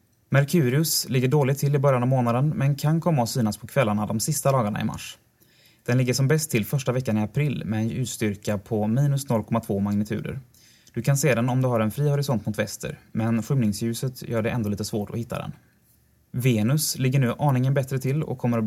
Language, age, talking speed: Swedish, 20-39, 215 wpm